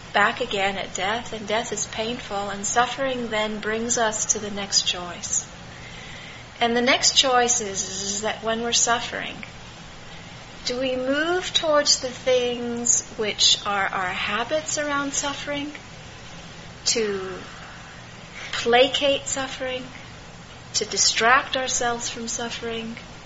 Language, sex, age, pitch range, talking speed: English, female, 30-49, 210-255 Hz, 120 wpm